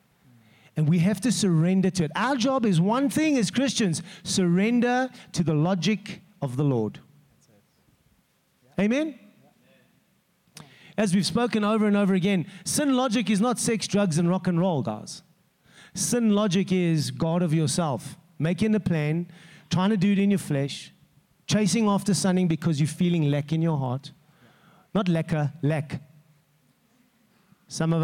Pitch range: 155-200 Hz